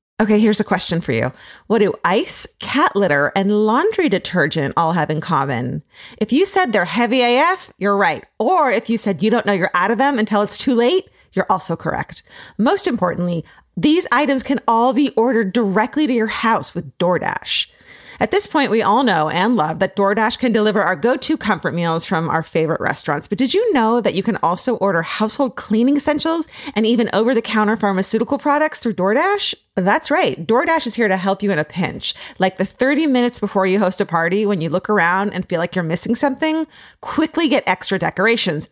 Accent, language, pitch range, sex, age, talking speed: American, English, 185-245 Hz, female, 30-49, 205 wpm